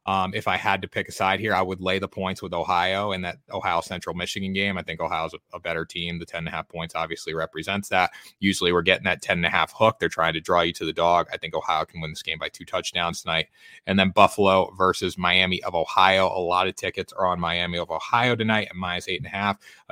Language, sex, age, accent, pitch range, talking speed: English, male, 30-49, American, 90-110 Hz, 230 wpm